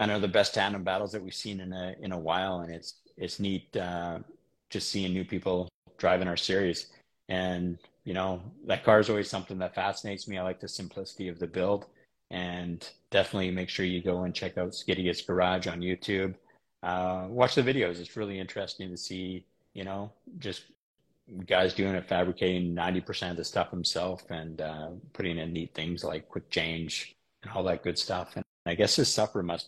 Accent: American